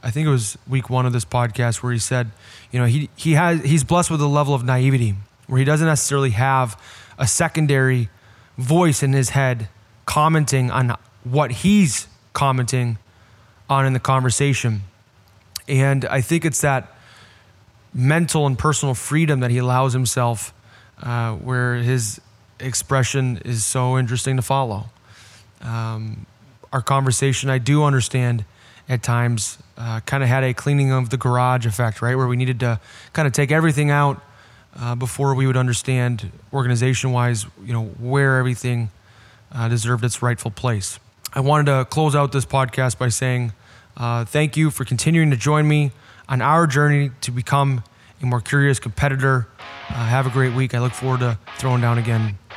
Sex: male